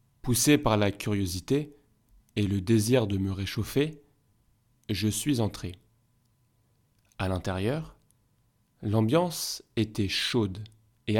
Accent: French